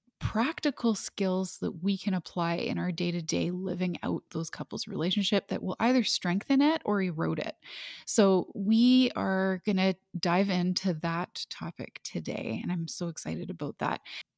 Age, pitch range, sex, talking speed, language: 20-39, 175-210 Hz, female, 160 wpm, English